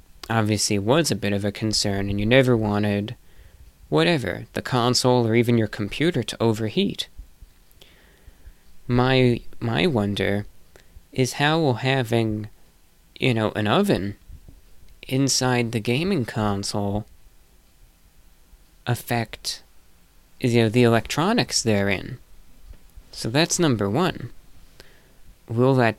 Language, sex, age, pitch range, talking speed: English, male, 20-39, 100-125 Hz, 110 wpm